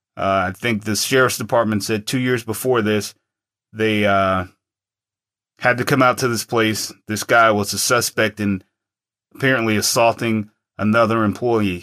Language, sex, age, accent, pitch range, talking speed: English, male, 30-49, American, 105-120 Hz, 150 wpm